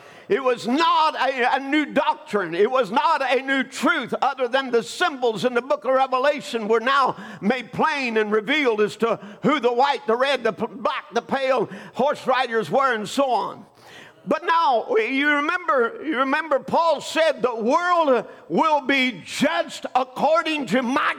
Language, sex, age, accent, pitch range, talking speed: English, male, 50-69, American, 255-320 Hz, 170 wpm